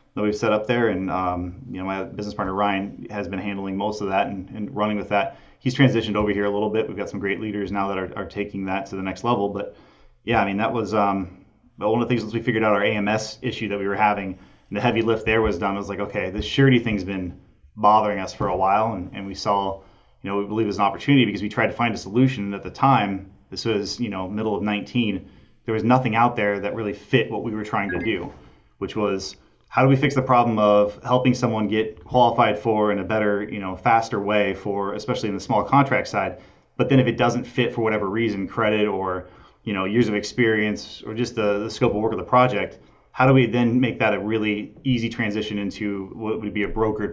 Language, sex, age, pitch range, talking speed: English, male, 20-39, 100-115 Hz, 260 wpm